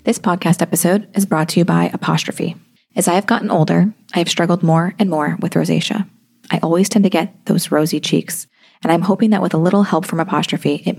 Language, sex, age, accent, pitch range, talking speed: English, female, 30-49, American, 160-205 Hz, 225 wpm